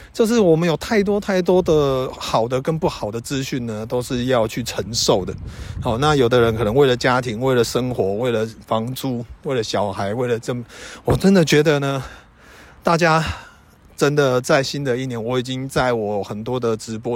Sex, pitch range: male, 105-145 Hz